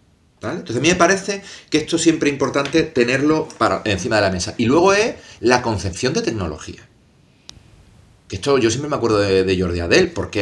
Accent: Spanish